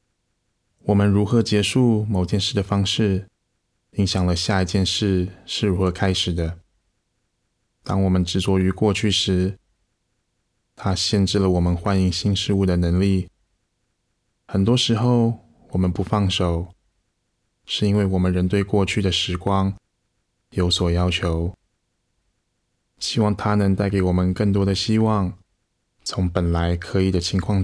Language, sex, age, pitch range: Chinese, male, 20-39, 90-105 Hz